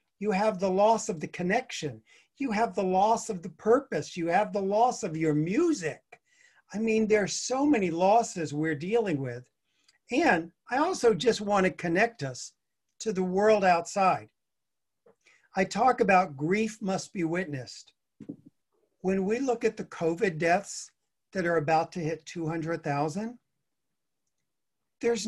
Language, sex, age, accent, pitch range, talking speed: English, male, 50-69, American, 160-220 Hz, 150 wpm